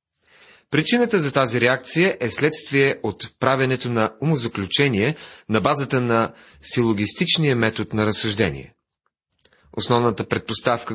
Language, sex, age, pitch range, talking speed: Bulgarian, male, 30-49, 110-150 Hz, 105 wpm